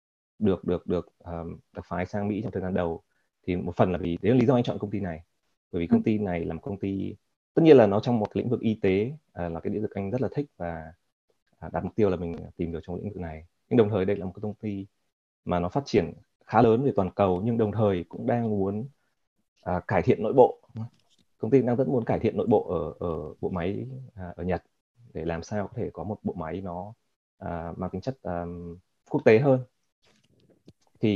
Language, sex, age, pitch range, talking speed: Vietnamese, male, 20-39, 90-110 Hz, 250 wpm